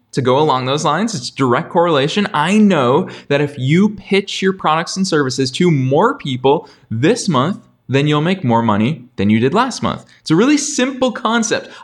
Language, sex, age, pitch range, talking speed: English, male, 20-39, 125-180 Hz, 195 wpm